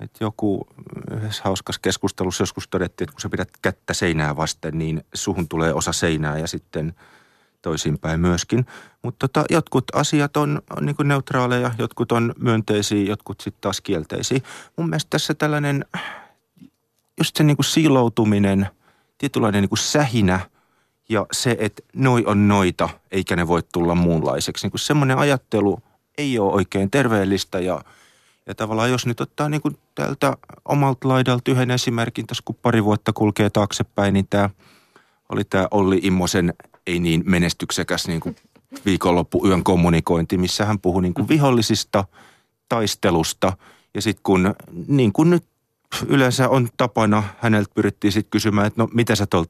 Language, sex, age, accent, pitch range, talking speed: Finnish, male, 30-49, native, 90-125 Hz, 145 wpm